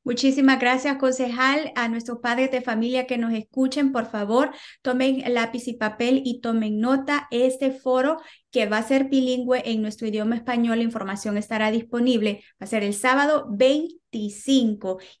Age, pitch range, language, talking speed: 30-49, 220-255 Hz, English, 160 wpm